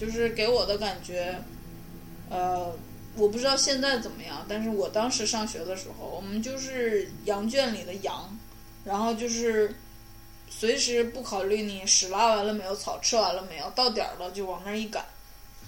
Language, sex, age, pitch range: Chinese, female, 20-39, 200-240 Hz